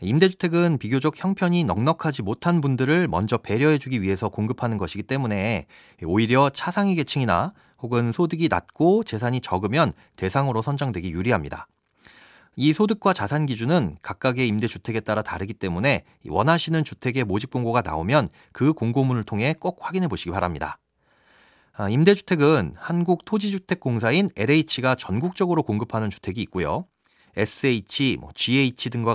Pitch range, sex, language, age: 110-165 Hz, male, Korean, 40-59